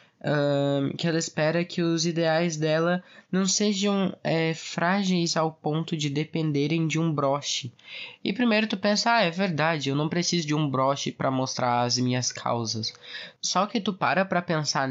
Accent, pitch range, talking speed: Brazilian, 145-185 Hz, 175 wpm